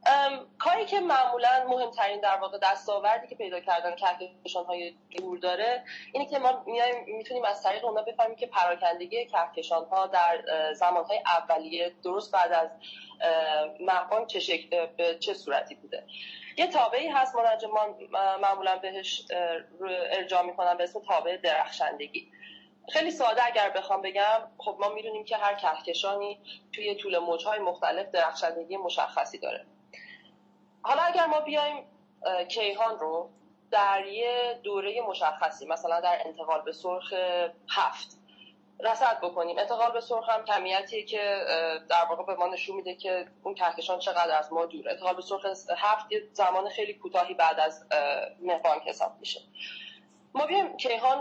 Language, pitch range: Persian, 175-225 Hz